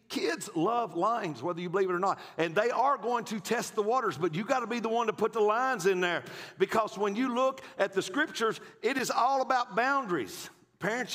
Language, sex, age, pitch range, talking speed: English, male, 50-69, 145-220 Hz, 230 wpm